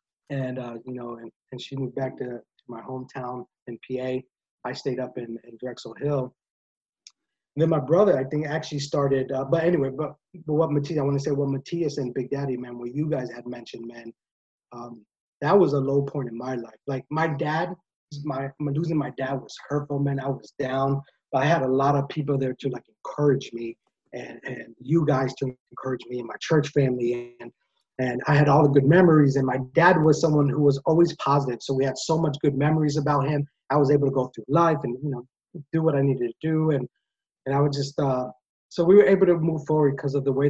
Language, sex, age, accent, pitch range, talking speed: English, male, 30-49, American, 125-150 Hz, 235 wpm